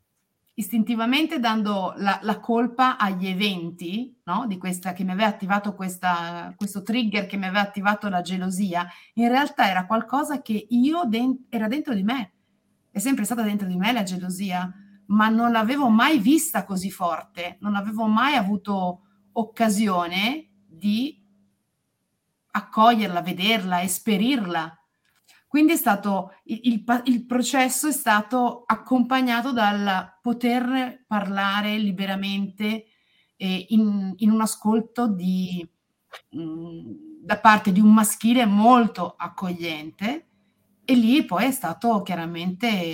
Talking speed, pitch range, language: 130 wpm, 185-235 Hz, Italian